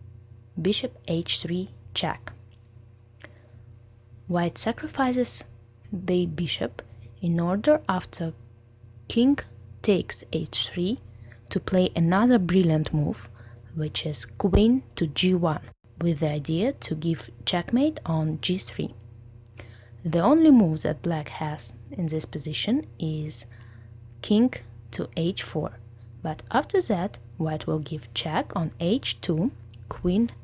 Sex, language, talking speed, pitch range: female, English, 105 wpm, 115-175 Hz